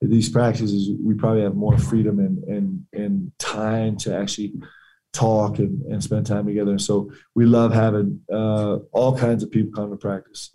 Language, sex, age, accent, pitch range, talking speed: English, male, 20-39, American, 105-125 Hz, 180 wpm